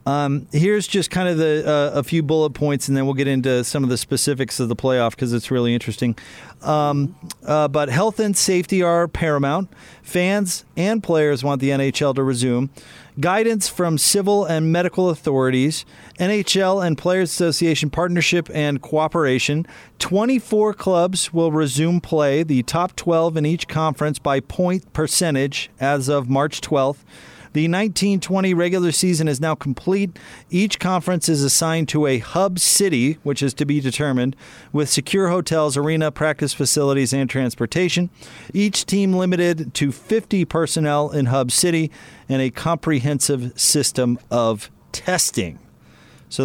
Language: English